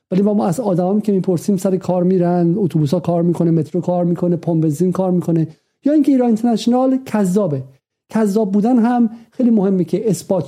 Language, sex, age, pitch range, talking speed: Persian, male, 50-69, 160-215 Hz, 185 wpm